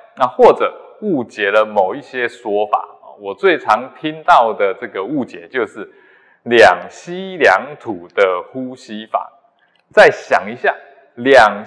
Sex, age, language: male, 20-39, Chinese